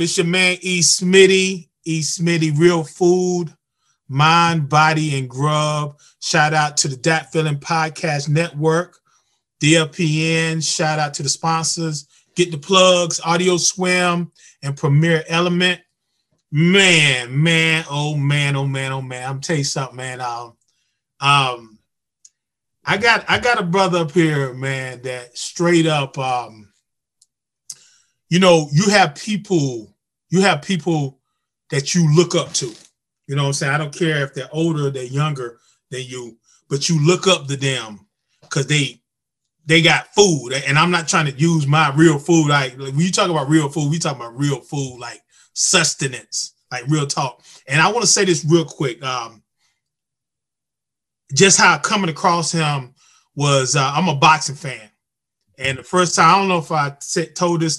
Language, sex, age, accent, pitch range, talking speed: English, male, 30-49, American, 140-170 Hz, 165 wpm